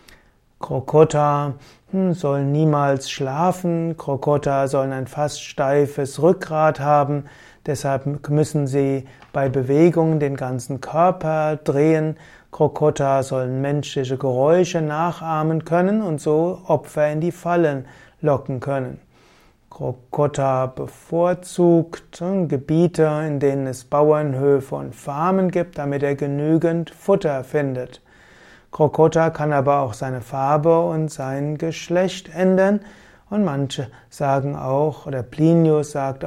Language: German